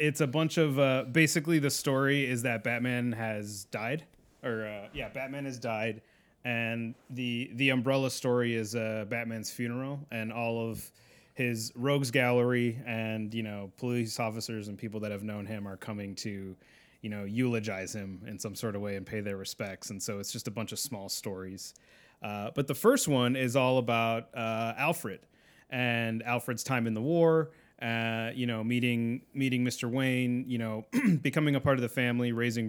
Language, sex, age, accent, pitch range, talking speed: English, male, 30-49, American, 110-125 Hz, 185 wpm